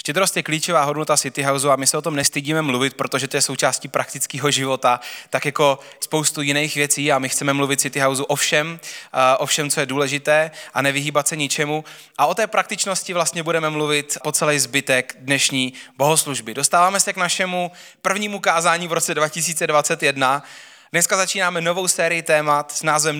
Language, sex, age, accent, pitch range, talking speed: Czech, male, 20-39, native, 140-175 Hz, 180 wpm